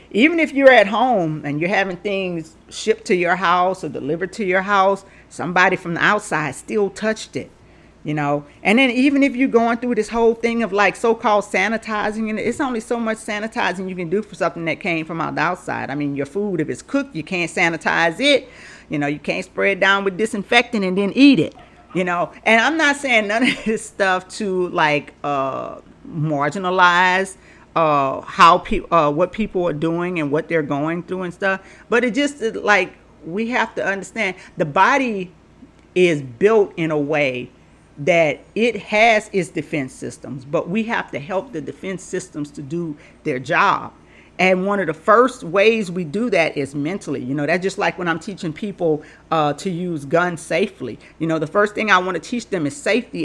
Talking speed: 205 wpm